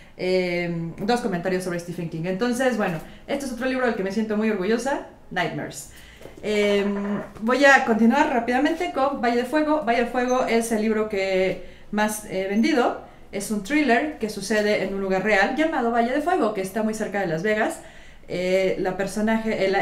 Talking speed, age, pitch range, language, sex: 180 wpm, 30-49, 195-235 Hz, Spanish, female